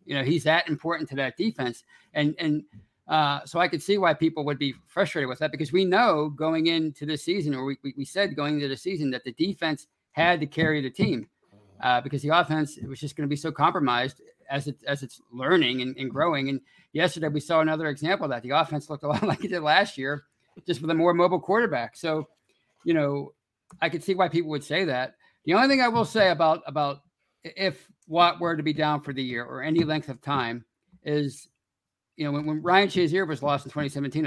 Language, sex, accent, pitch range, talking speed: English, male, American, 140-170 Hz, 230 wpm